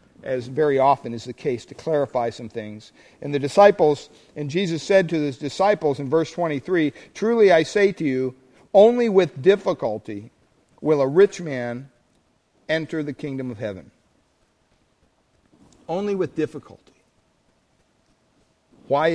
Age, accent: 50-69, American